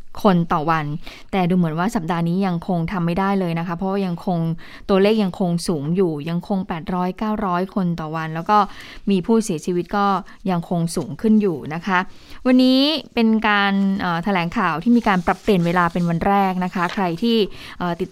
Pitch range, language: 175-210 Hz, Thai